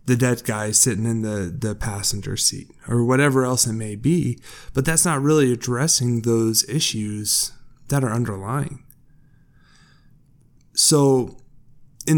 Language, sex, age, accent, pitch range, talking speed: English, male, 20-39, American, 115-140 Hz, 130 wpm